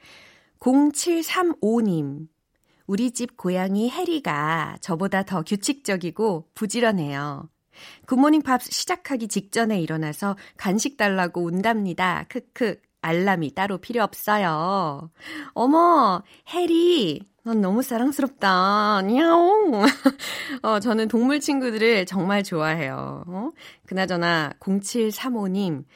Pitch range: 170-255 Hz